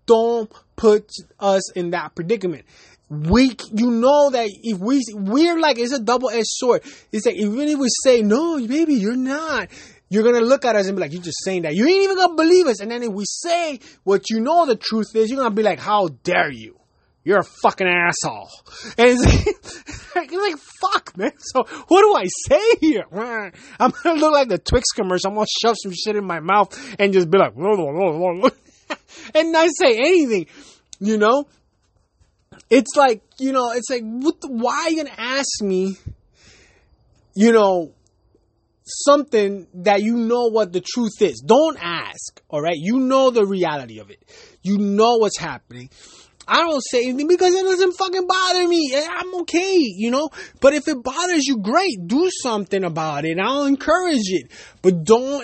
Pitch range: 205-300 Hz